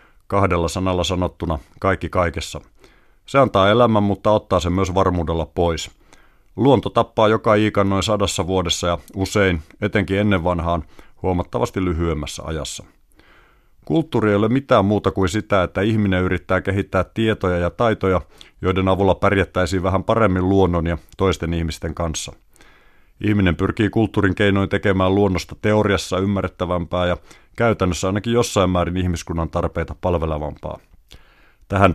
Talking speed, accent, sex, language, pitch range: 130 wpm, native, male, Finnish, 85-100 Hz